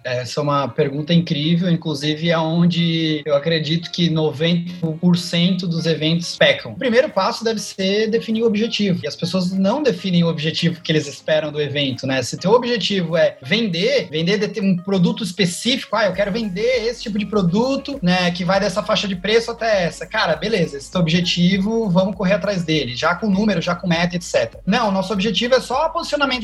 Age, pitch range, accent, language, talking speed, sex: 20-39, 170-235 Hz, Brazilian, Portuguese, 195 wpm, male